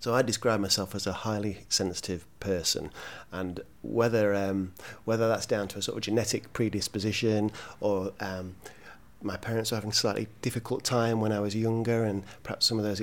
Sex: male